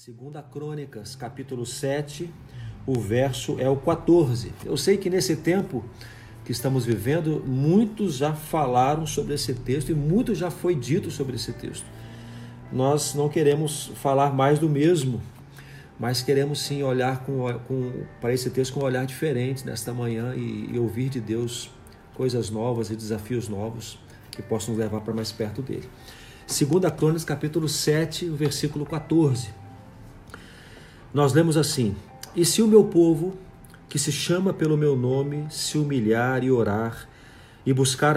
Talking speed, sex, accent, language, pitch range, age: 150 wpm, male, Brazilian, Portuguese, 125-155 Hz, 40-59